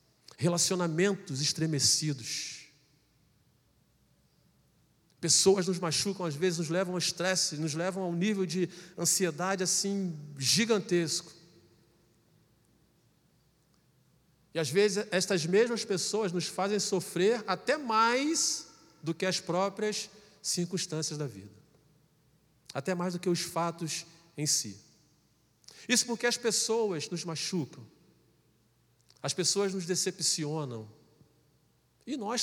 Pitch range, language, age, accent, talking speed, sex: 135-185 Hz, Portuguese, 40-59, Brazilian, 105 wpm, male